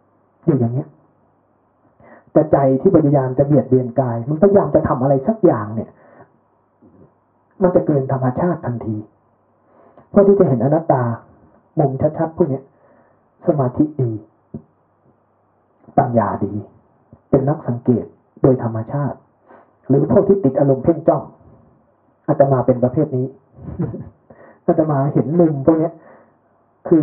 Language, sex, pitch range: Thai, male, 125-170 Hz